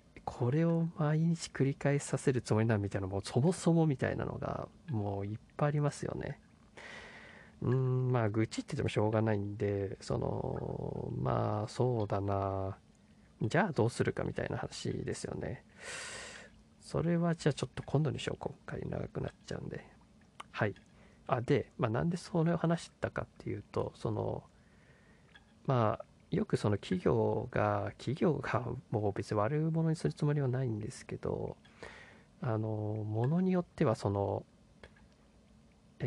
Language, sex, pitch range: Japanese, male, 105-145 Hz